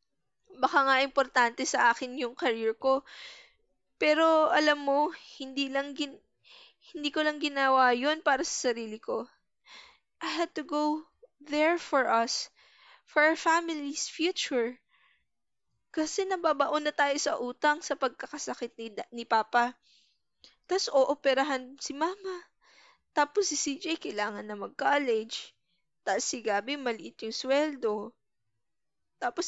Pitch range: 255-320 Hz